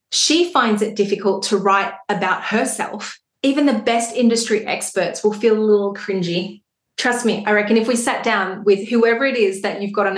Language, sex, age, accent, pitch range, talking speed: English, female, 30-49, Australian, 200-235 Hz, 200 wpm